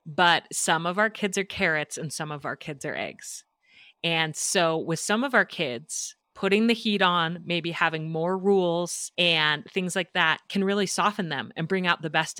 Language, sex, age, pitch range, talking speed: English, female, 30-49, 160-200 Hz, 205 wpm